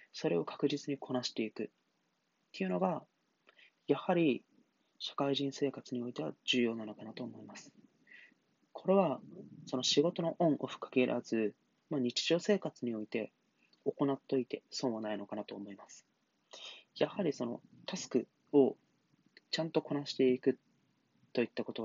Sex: male